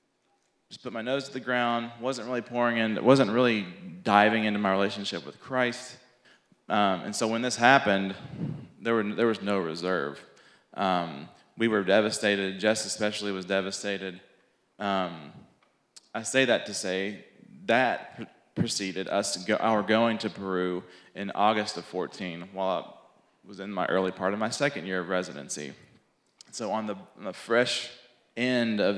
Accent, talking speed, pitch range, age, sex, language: American, 165 wpm, 100-120 Hz, 20-39, male, English